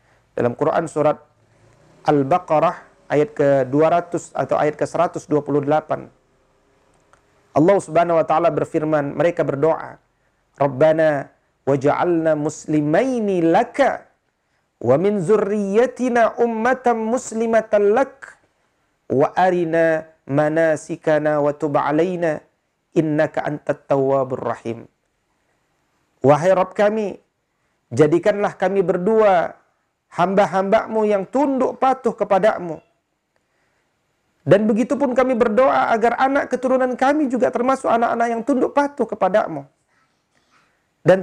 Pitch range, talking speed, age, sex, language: 155-225 Hz, 85 wpm, 50-69, male, Indonesian